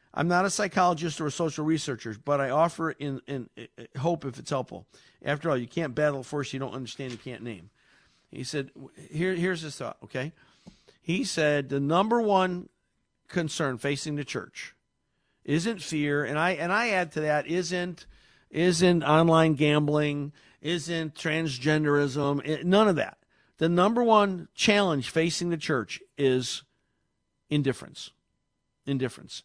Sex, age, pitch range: male, 50-69, 140-180 Hz